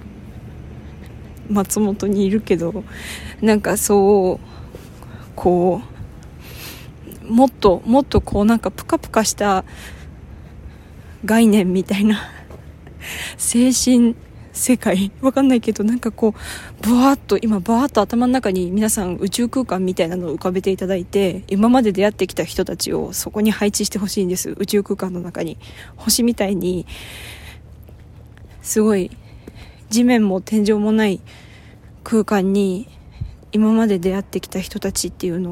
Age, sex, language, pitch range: 20-39, female, Japanese, 165-215 Hz